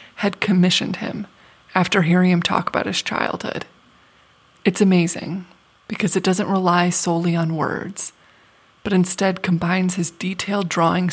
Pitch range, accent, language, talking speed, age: 175-195 Hz, American, English, 135 wpm, 20-39